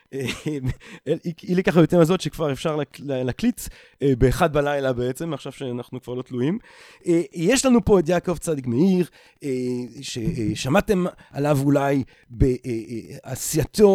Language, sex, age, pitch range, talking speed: Hebrew, male, 40-59, 140-180 Hz, 110 wpm